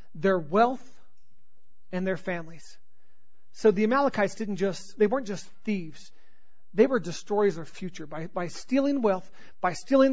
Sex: male